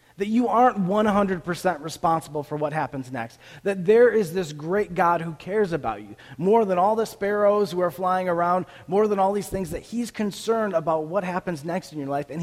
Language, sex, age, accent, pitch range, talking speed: English, male, 30-49, American, 150-215 Hz, 210 wpm